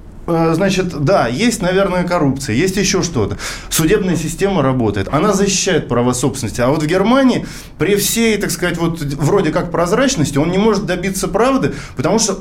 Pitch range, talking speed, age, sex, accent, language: 130-185 Hz, 165 wpm, 20-39, male, native, Russian